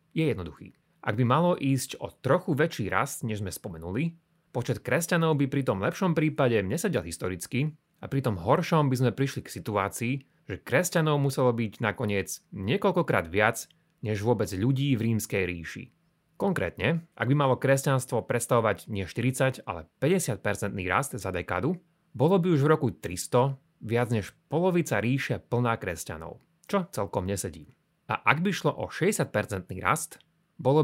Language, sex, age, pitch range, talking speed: Slovak, male, 30-49, 110-155 Hz, 155 wpm